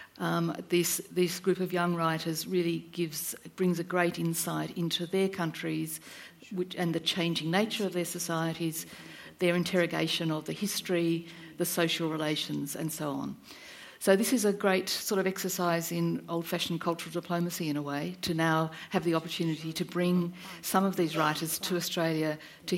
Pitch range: 170-195 Hz